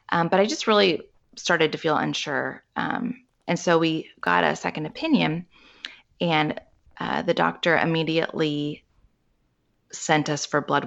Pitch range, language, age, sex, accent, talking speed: 150-180 Hz, English, 20-39, female, American, 145 wpm